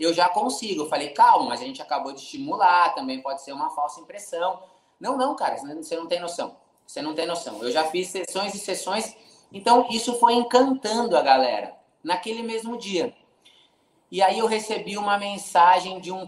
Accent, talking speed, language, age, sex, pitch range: Brazilian, 190 wpm, Portuguese, 20-39, male, 175-260 Hz